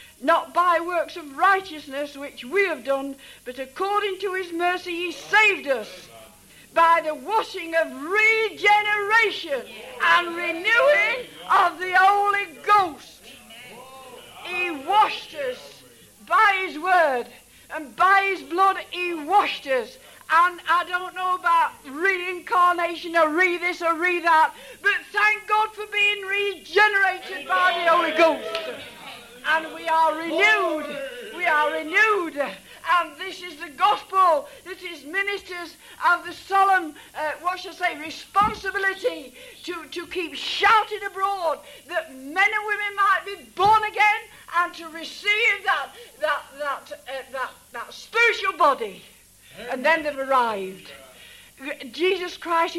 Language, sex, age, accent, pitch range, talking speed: English, female, 60-79, British, 305-395 Hz, 135 wpm